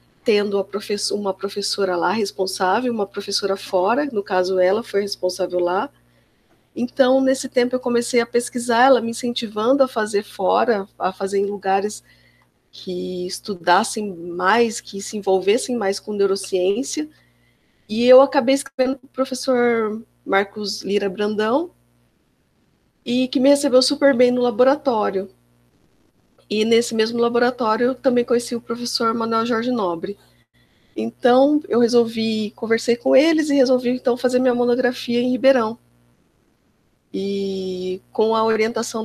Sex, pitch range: female, 195-250 Hz